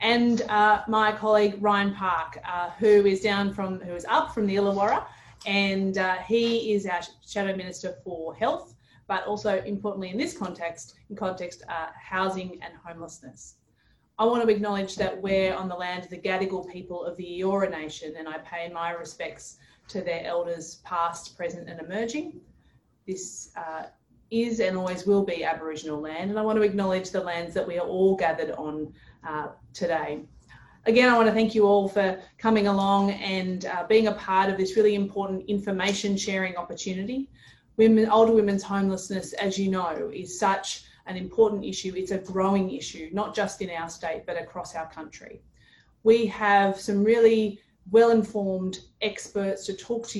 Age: 30-49